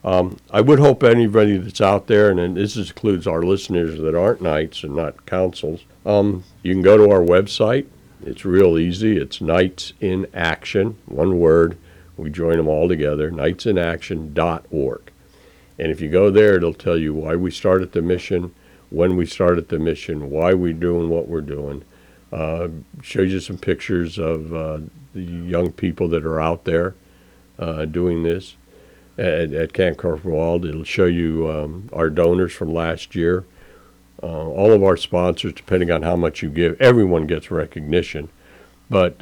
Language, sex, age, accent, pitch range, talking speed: English, male, 60-79, American, 80-95 Hz, 170 wpm